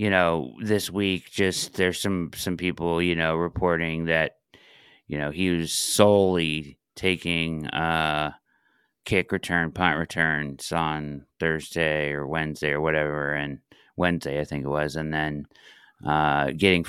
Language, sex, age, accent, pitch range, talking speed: English, male, 30-49, American, 80-100 Hz, 140 wpm